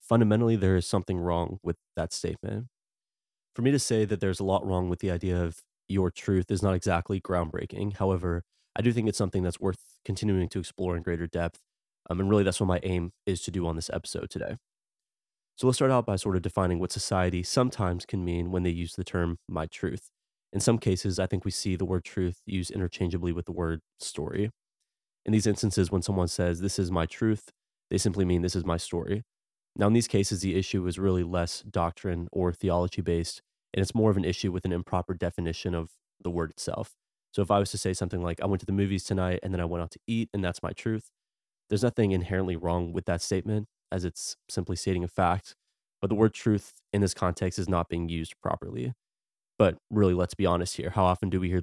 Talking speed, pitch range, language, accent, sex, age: 225 wpm, 90-100 Hz, English, American, male, 20-39